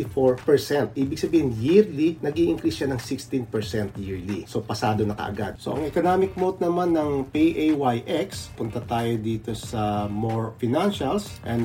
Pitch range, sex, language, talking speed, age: 115-165 Hz, male, English, 145 wpm, 40-59